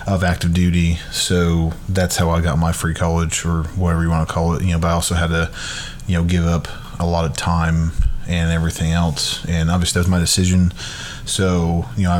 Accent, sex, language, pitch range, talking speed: American, male, English, 85-95 Hz, 220 wpm